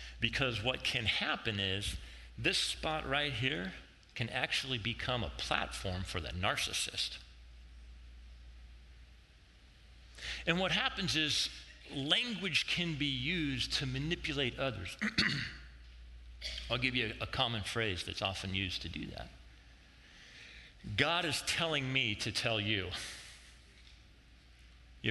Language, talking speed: English, 115 wpm